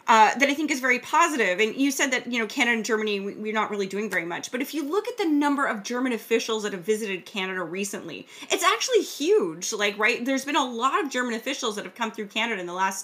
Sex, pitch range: female, 195-255 Hz